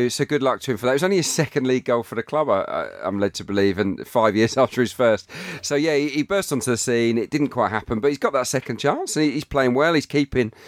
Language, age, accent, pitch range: English, 40-59, British, 100-130 Hz